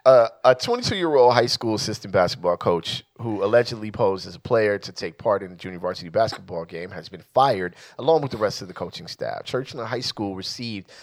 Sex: male